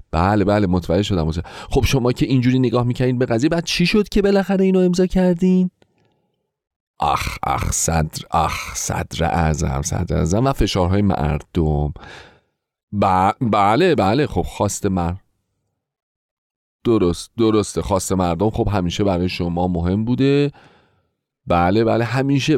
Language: Persian